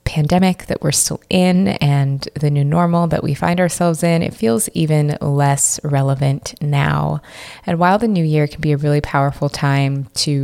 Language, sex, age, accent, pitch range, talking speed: English, female, 20-39, American, 140-160 Hz, 185 wpm